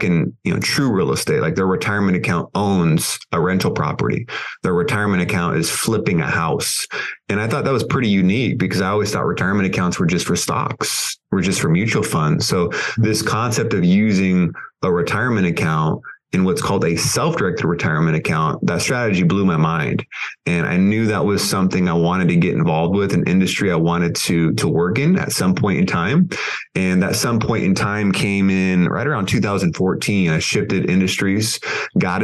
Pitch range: 90-105 Hz